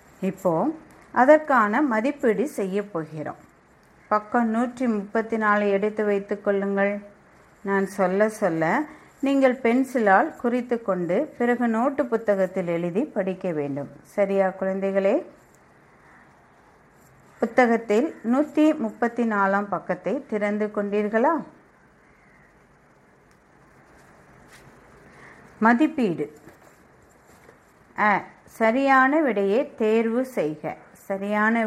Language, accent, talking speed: Tamil, native, 75 wpm